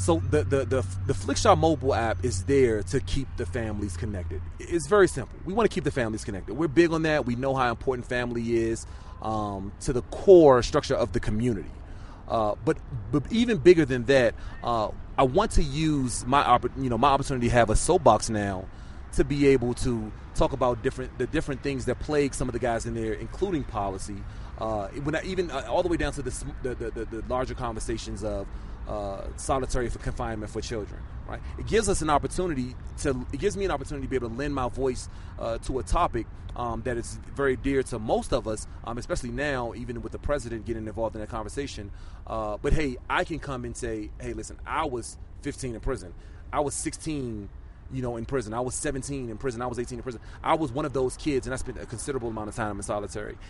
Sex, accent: male, American